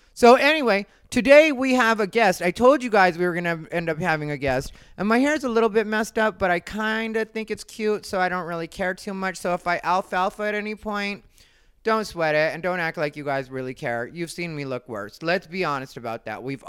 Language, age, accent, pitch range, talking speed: English, 30-49, American, 150-210 Hz, 260 wpm